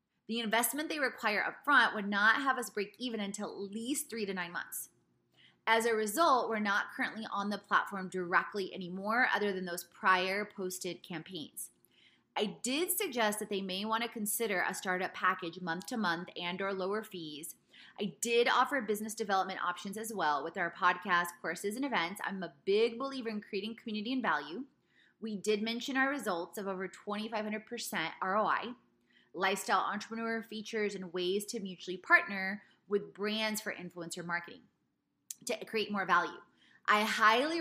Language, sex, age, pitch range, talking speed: English, female, 20-39, 185-225 Hz, 170 wpm